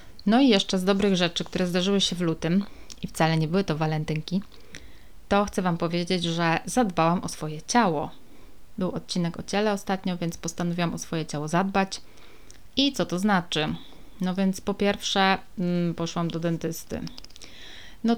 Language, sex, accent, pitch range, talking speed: Polish, female, native, 170-195 Hz, 160 wpm